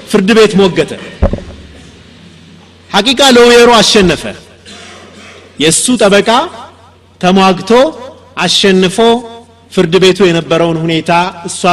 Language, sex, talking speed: Amharic, male, 80 wpm